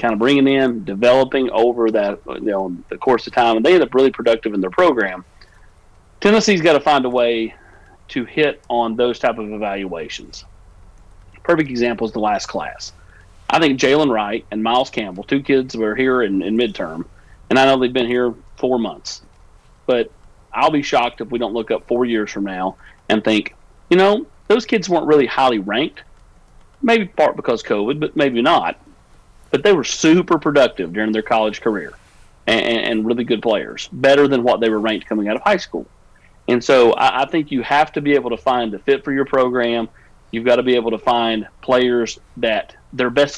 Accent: American